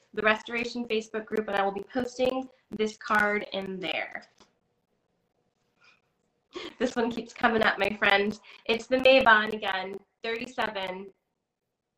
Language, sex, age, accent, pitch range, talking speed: English, female, 20-39, American, 195-245 Hz, 125 wpm